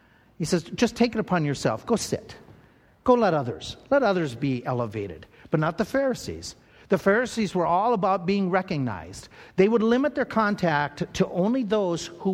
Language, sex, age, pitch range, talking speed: English, male, 50-69, 140-215 Hz, 175 wpm